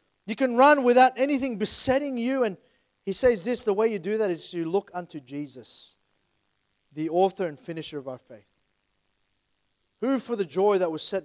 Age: 30-49